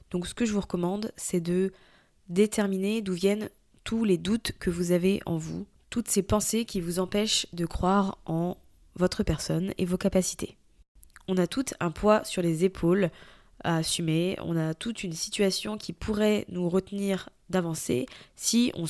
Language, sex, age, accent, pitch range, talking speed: French, female, 20-39, French, 175-200 Hz, 175 wpm